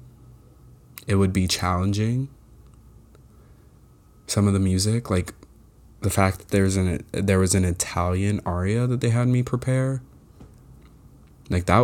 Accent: American